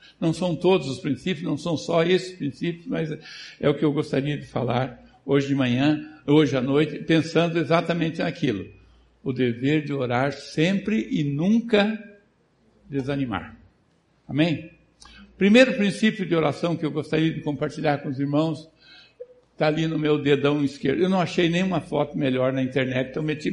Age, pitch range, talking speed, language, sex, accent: 60-79, 145-190 Hz, 165 wpm, Portuguese, male, Brazilian